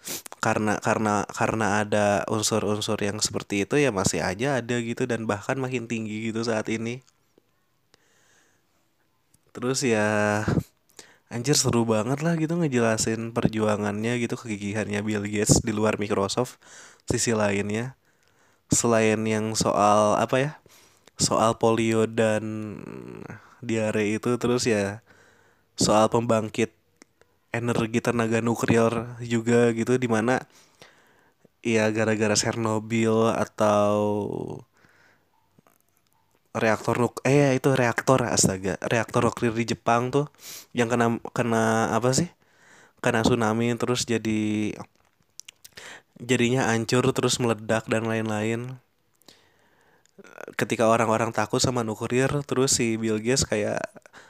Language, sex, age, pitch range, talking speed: Indonesian, male, 20-39, 110-120 Hz, 110 wpm